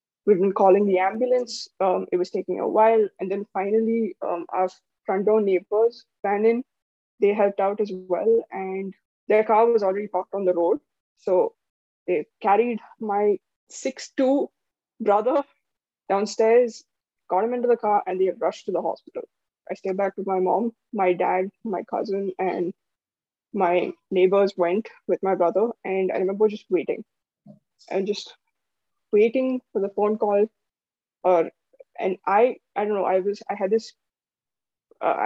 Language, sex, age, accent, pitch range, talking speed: English, female, 20-39, Indian, 190-225 Hz, 160 wpm